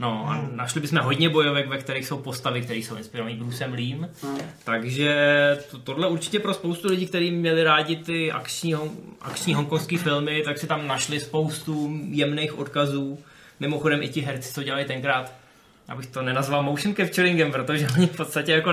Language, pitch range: Czech, 135-165 Hz